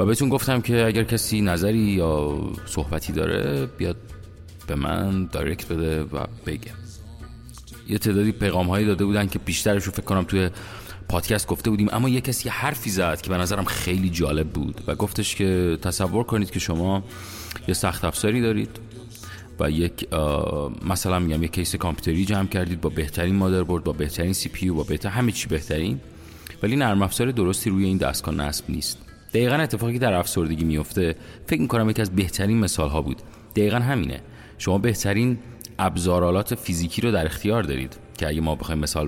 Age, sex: 30-49, male